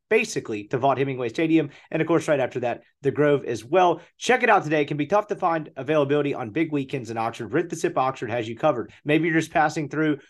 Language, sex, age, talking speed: English, male, 30-49, 250 wpm